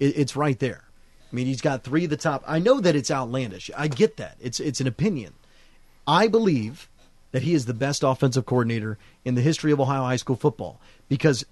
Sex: male